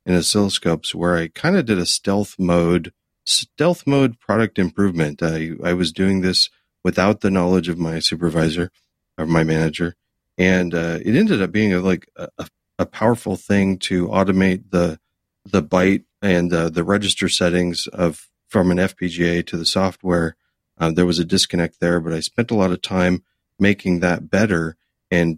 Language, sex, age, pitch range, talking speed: English, male, 40-59, 85-100 Hz, 175 wpm